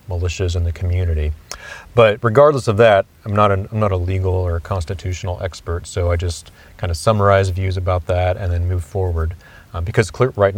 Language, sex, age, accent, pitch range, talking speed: English, male, 30-49, American, 90-110 Hz, 180 wpm